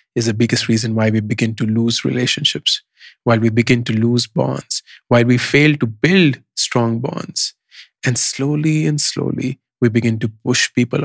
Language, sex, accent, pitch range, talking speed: English, male, Indian, 120-155 Hz, 175 wpm